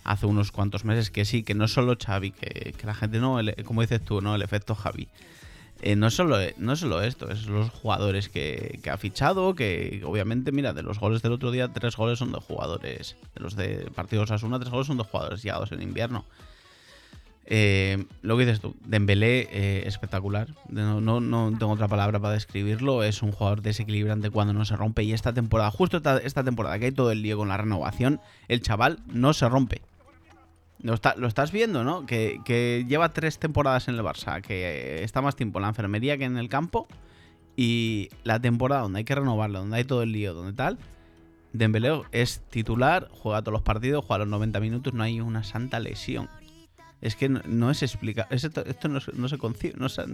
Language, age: Spanish, 30-49